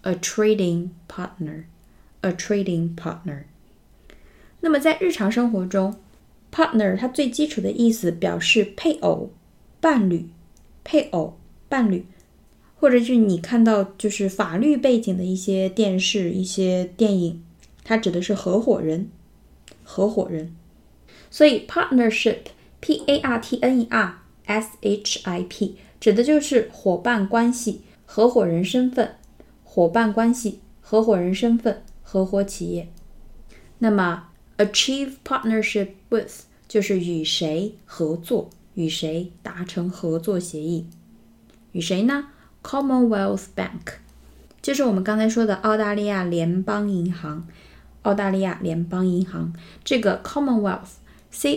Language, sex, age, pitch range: Chinese, female, 20-39, 175-225 Hz